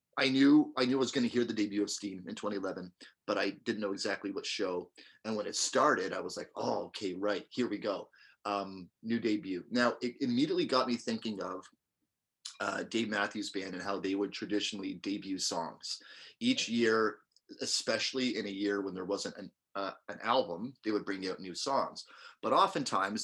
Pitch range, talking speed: 100-125 Hz, 195 wpm